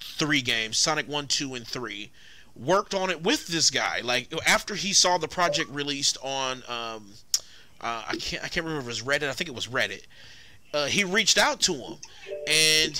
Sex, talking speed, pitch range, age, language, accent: male, 205 wpm, 140-195 Hz, 30-49, English, American